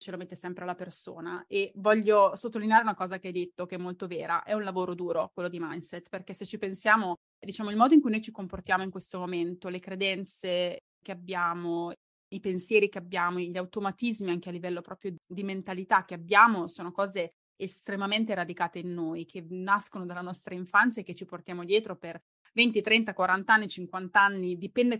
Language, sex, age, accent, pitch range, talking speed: Italian, female, 20-39, native, 180-205 Hz, 195 wpm